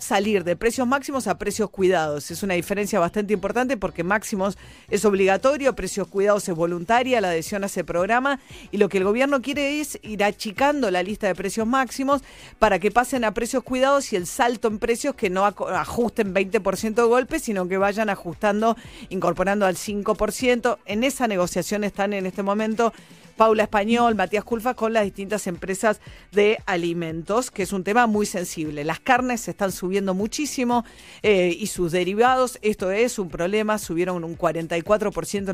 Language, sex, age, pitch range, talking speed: Spanish, female, 40-59, 180-230 Hz, 175 wpm